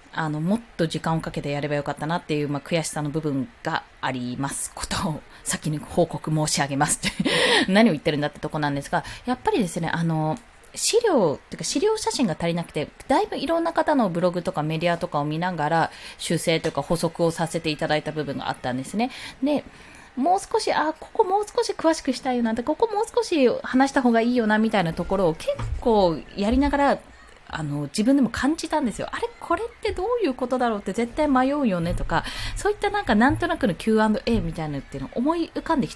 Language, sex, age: Japanese, female, 20-39